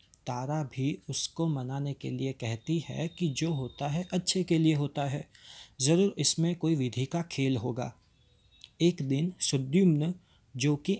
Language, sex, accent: Hindi, male, native